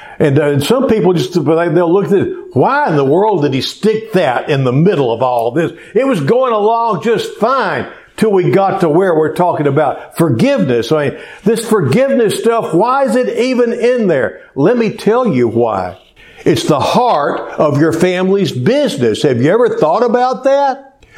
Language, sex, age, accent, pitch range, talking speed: English, male, 60-79, American, 155-240 Hz, 190 wpm